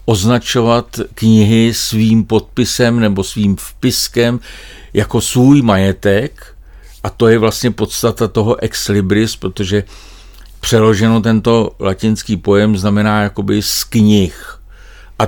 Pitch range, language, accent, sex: 105-130 Hz, Czech, native, male